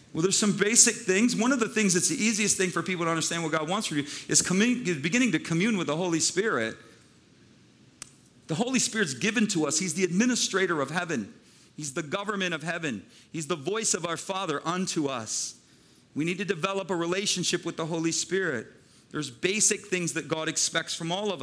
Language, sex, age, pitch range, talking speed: English, male, 40-59, 160-205 Hz, 205 wpm